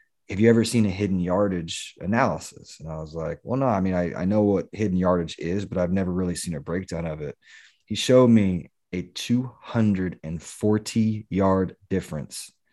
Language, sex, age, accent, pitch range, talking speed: English, male, 30-49, American, 90-105 Hz, 180 wpm